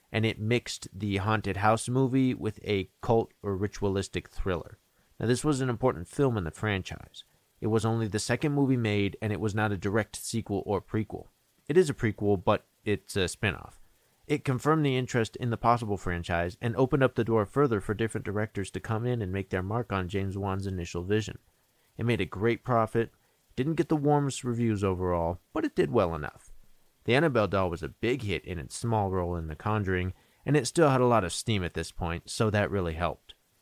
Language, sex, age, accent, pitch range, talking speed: English, male, 30-49, American, 90-115 Hz, 215 wpm